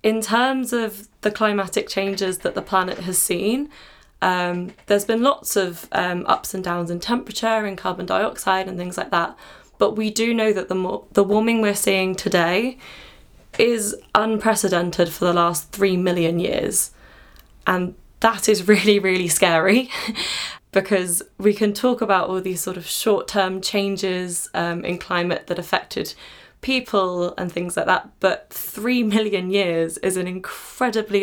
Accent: British